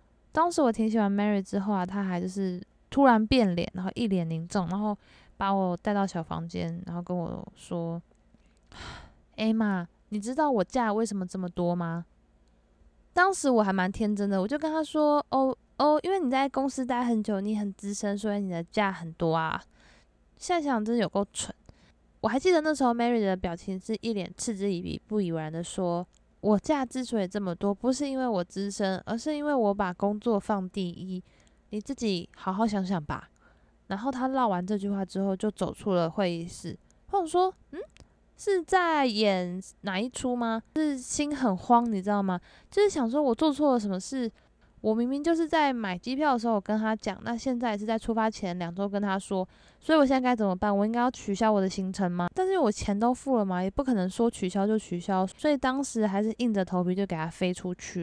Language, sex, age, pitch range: Chinese, female, 20-39, 185-245 Hz